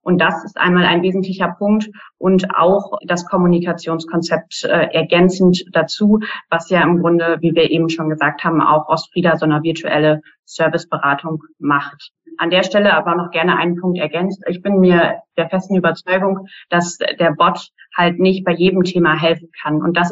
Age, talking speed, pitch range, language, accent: 30-49, 170 wpm, 170-190 Hz, German, German